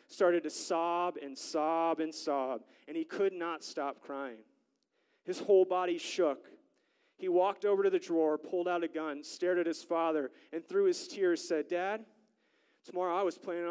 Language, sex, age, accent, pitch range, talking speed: English, male, 30-49, American, 155-205 Hz, 180 wpm